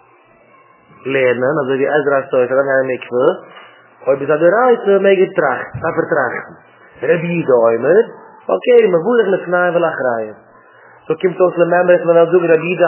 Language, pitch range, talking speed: English, 180-215 Hz, 170 wpm